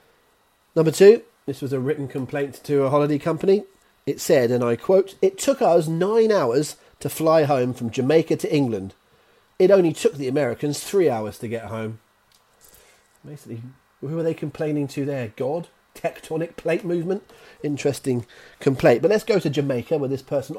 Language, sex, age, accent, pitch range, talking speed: English, male, 30-49, British, 120-165 Hz, 170 wpm